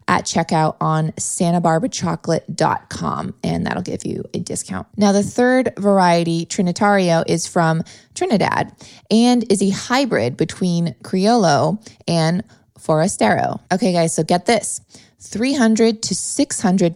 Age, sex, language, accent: 20-39, female, English, American